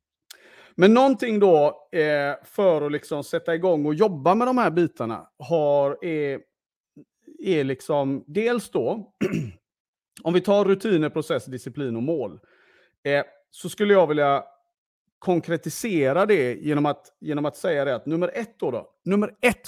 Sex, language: male, Swedish